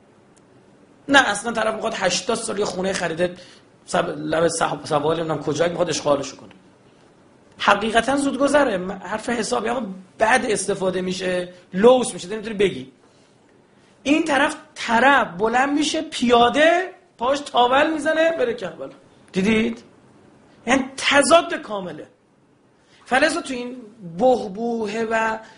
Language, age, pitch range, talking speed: Persian, 40-59, 190-260 Hz, 115 wpm